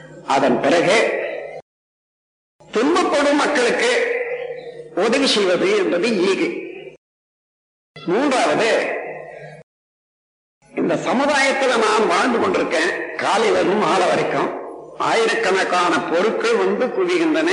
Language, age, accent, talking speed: Tamil, 50-69, native, 75 wpm